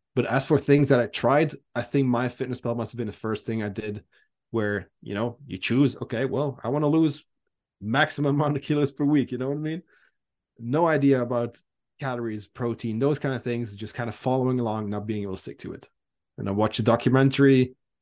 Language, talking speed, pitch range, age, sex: English, 225 wpm, 110-140 Hz, 20-39, male